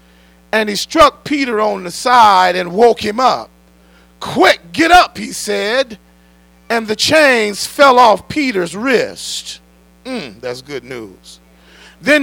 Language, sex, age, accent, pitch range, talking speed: English, male, 40-59, American, 175-270 Hz, 135 wpm